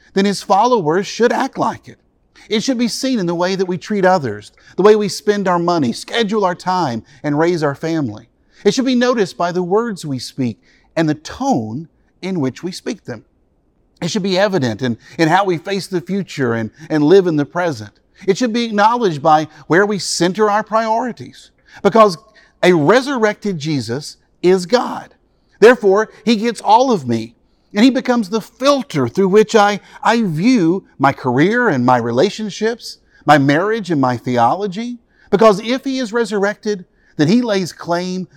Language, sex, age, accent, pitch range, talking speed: English, male, 50-69, American, 140-215 Hz, 180 wpm